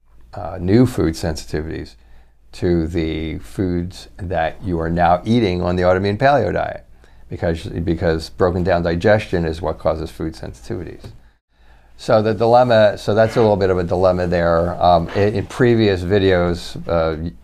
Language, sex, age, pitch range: English, male, 50-69, 80-95 Hz